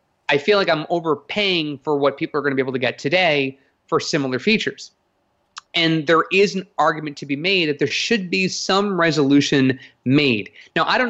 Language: English